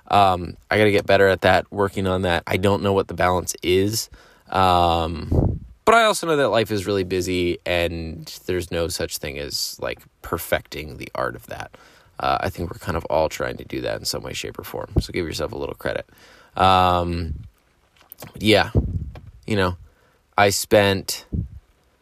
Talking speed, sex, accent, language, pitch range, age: 185 wpm, male, American, English, 85-105 Hz, 20-39